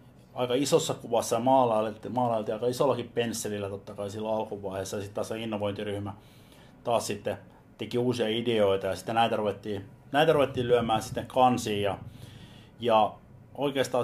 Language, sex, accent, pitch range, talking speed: Finnish, male, native, 100-125 Hz, 150 wpm